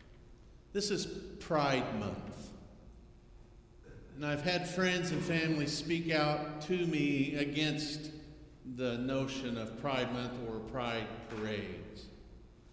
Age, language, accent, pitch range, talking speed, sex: 50-69, English, American, 110-150 Hz, 110 wpm, male